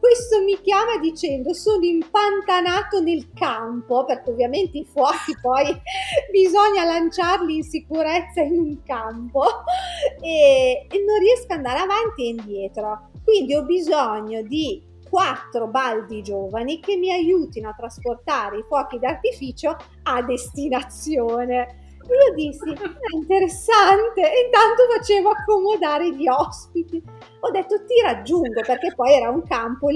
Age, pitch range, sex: 30-49, 250-385 Hz, female